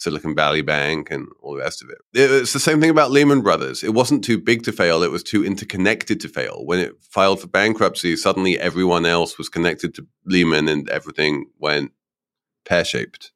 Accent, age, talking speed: British, 30-49, 200 wpm